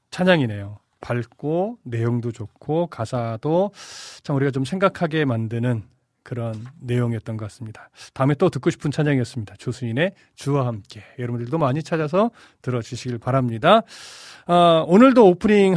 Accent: native